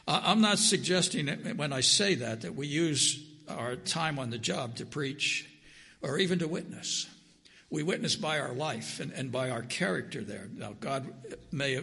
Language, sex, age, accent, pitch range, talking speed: English, male, 60-79, American, 130-180 Hz, 180 wpm